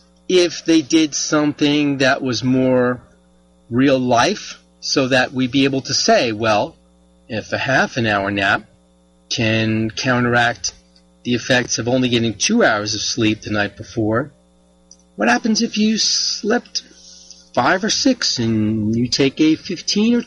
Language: English